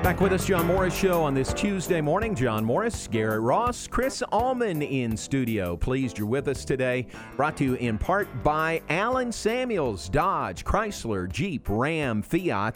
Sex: male